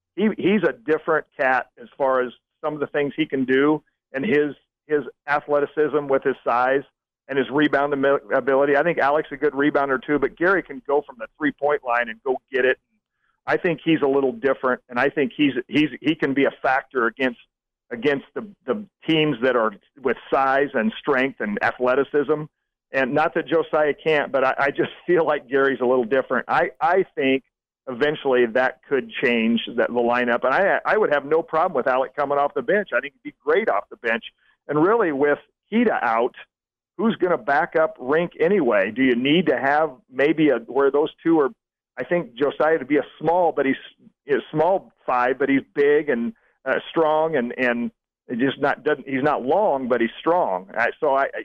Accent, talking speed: American, 200 wpm